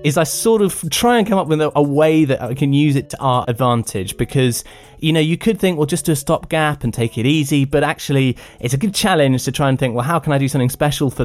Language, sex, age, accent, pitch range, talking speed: English, male, 20-39, British, 115-150 Hz, 285 wpm